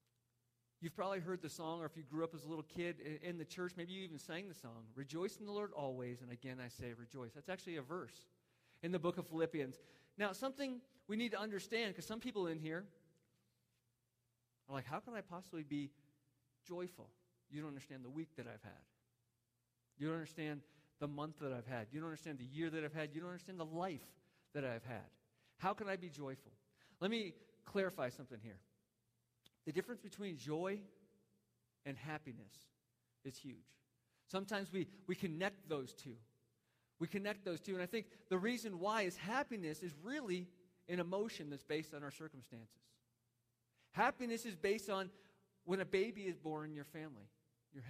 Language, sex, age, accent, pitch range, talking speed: English, male, 40-59, American, 125-185 Hz, 190 wpm